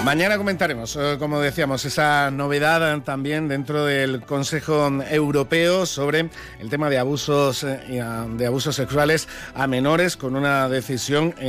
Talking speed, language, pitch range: 125 wpm, Spanish, 130-160 Hz